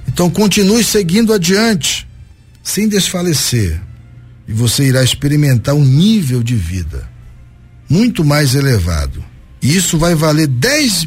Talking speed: 120 wpm